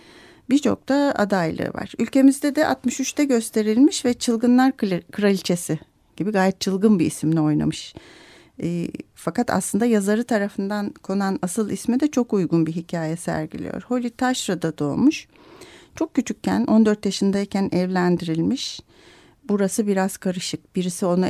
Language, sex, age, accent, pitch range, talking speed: Turkish, female, 40-59, native, 190-245 Hz, 125 wpm